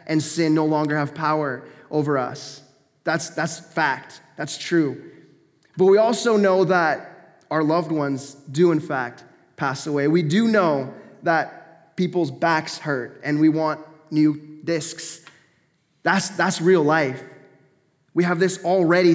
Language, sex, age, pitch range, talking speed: English, male, 20-39, 145-180 Hz, 145 wpm